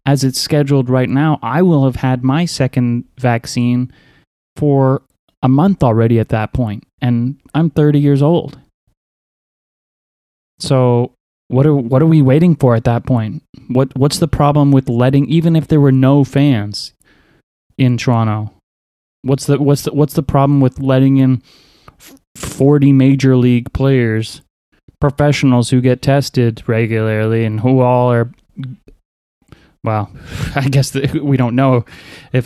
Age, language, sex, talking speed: 20-39, English, male, 145 wpm